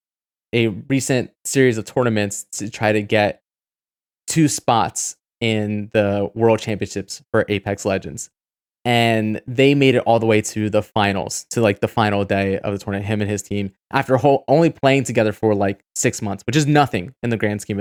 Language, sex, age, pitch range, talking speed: English, male, 20-39, 105-130 Hz, 190 wpm